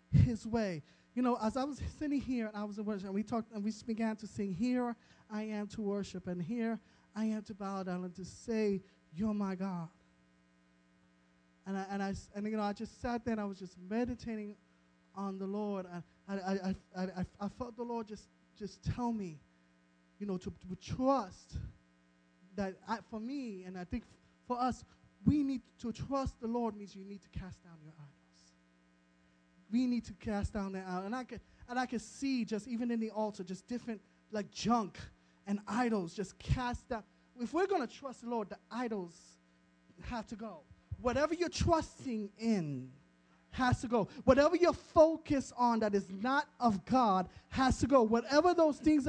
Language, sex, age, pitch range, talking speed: English, male, 20-39, 185-245 Hz, 195 wpm